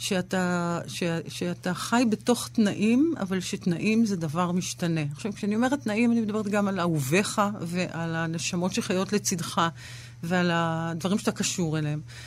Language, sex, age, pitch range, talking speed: Hebrew, female, 50-69, 165-230 Hz, 140 wpm